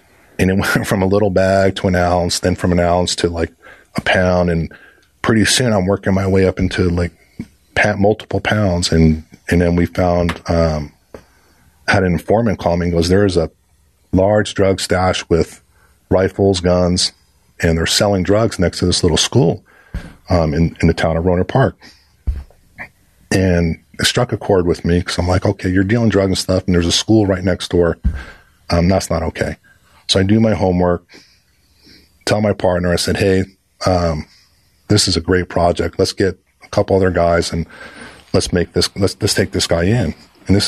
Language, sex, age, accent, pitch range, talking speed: English, male, 40-59, American, 85-100 Hz, 195 wpm